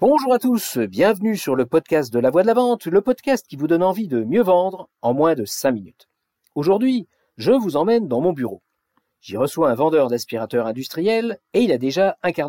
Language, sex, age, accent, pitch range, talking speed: French, male, 50-69, French, 130-210 Hz, 220 wpm